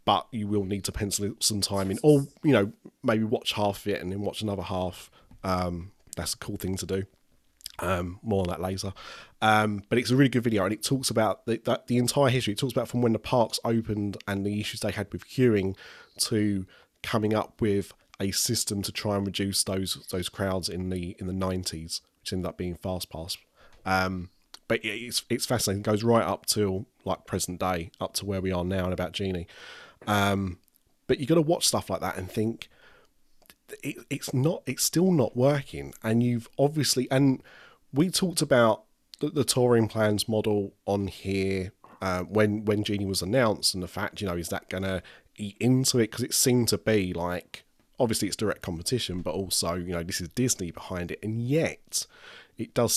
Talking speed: 210 wpm